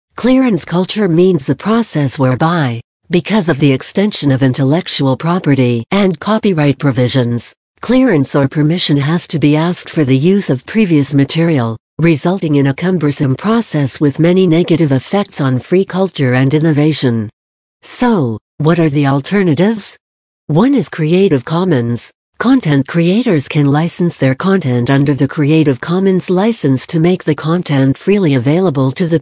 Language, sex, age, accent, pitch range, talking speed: English, female, 60-79, American, 135-185 Hz, 145 wpm